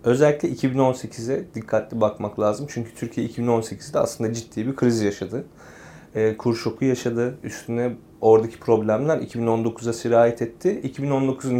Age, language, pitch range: 30-49, Turkish, 110-130 Hz